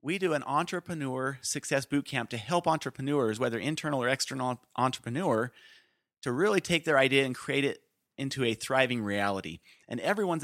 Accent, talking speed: American, 165 wpm